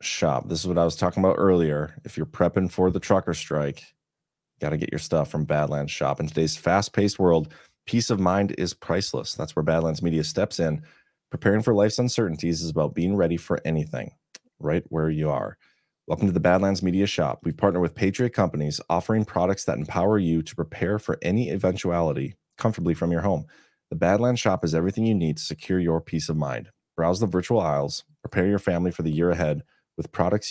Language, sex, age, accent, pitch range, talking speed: English, male, 30-49, American, 80-95 Hz, 205 wpm